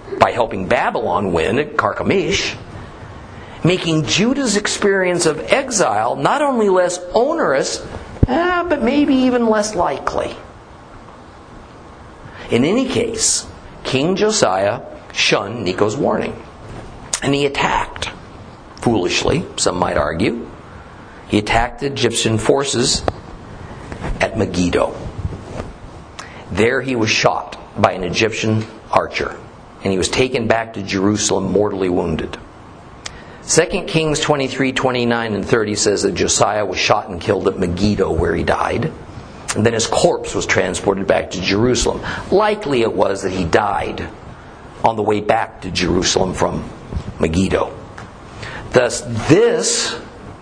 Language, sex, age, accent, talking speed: English, male, 50-69, American, 125 wpm